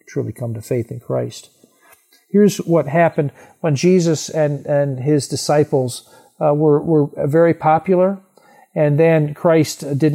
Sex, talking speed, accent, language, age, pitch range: male, 140 wpm, American, English, 50-69, 145-185 Hz